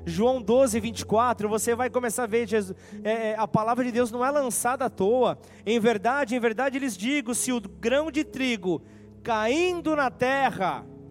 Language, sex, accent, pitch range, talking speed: Portuguese, male, Brazilian, 230-295 Hz, 165 wpm